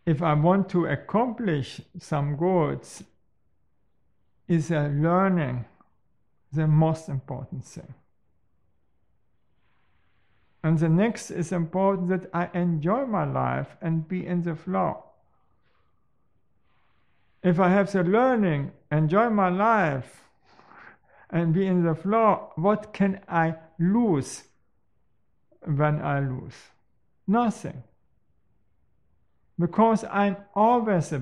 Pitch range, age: 150-195 Hz, 50-69